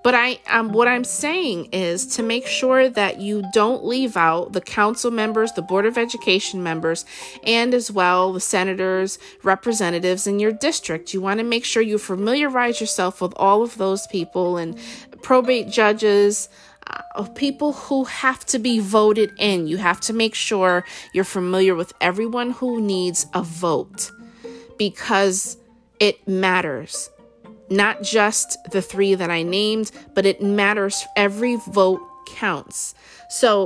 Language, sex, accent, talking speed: English, female, American, 155 wpm